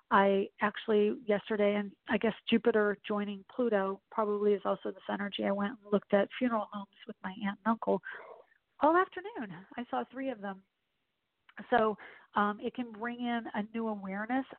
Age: 40-59